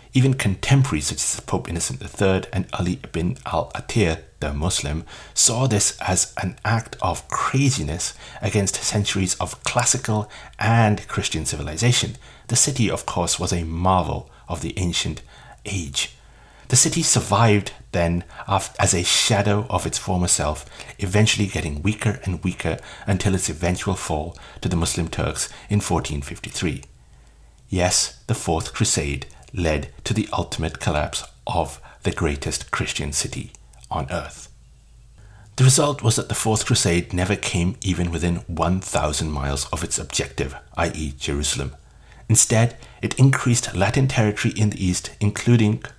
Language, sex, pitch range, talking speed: English, male, 85-115 Hz, 140 wpm